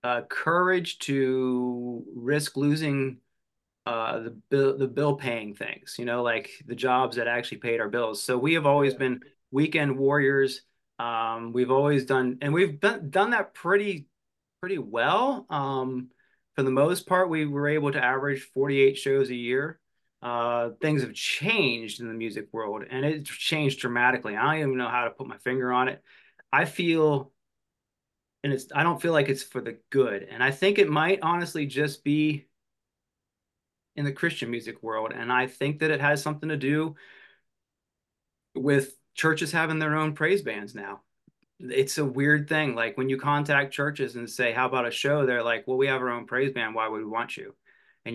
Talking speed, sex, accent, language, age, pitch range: 185 wpm, male, American, English, 30-49, 125-150 Hz